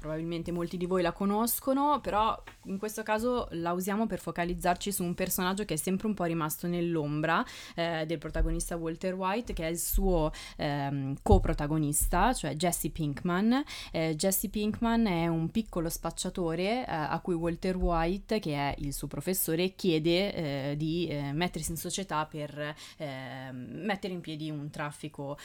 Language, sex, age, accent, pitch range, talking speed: Italian, female, 20-39, native, 155-190 Hz, 160 wpm